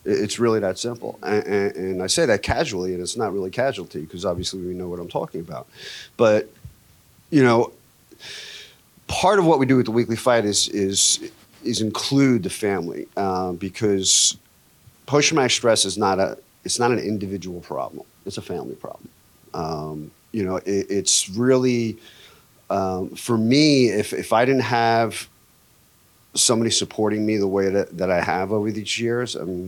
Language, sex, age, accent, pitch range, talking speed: English, male, 40-59, American, 95-115 Hz, 175 wpm